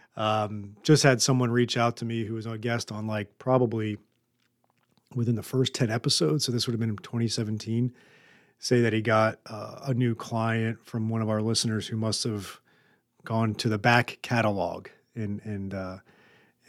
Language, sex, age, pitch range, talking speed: English, male, 40-59, 105-125 Hz, 180 wpm